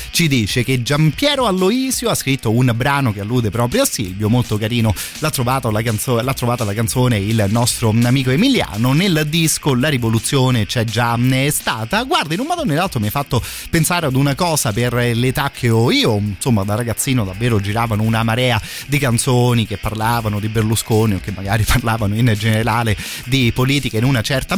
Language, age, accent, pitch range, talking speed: Italian, 30-49, native, 110-130 Hz, 190 wpm